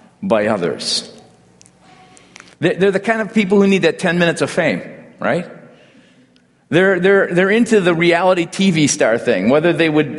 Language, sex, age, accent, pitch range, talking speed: English, male, 50-69, American, 120-190 Hz, 160 wpm